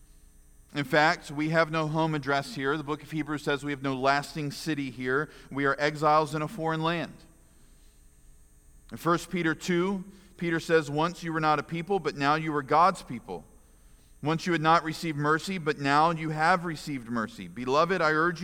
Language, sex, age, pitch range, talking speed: English, male, 40-59, 110-155 Hz, 190 wpm